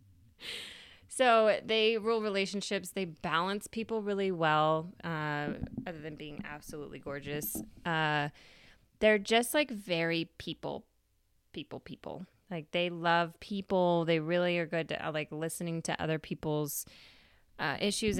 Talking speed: 130 wpm